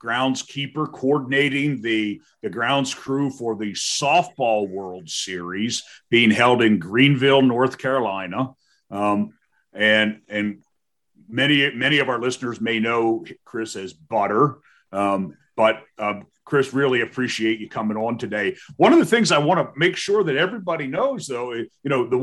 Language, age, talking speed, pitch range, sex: English, 40-59, 155 wpm, 110-140 Hz, male